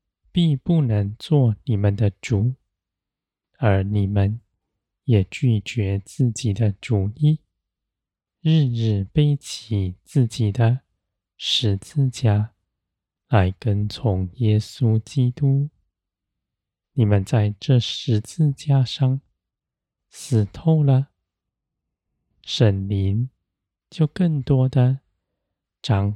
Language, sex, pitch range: Chinese, male, 100-130 Hz